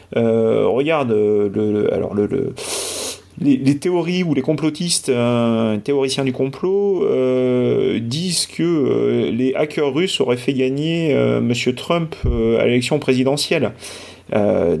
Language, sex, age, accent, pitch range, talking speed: French, male, 30-49, French, 120-160 Hz, 120 wpm